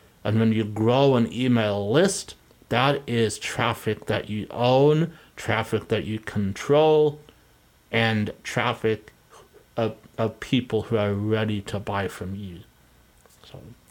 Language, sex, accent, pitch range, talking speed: English, male, American, 110-130 Hz, 130 wpm